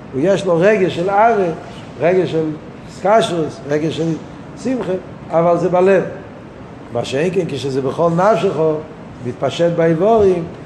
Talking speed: 130 wpm